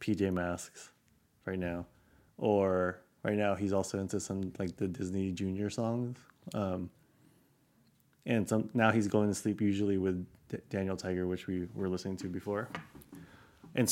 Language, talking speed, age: English, 155 wpm, 20-39